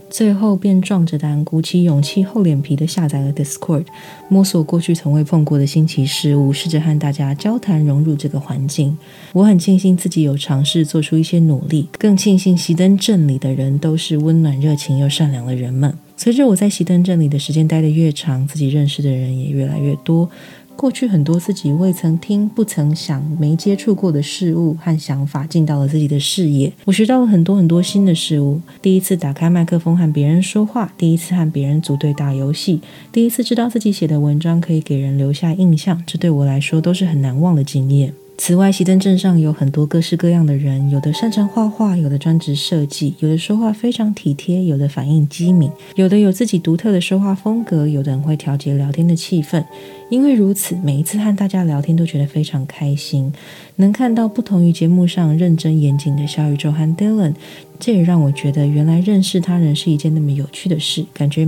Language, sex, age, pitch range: Chinese, female, 20-39, 145-185 Hz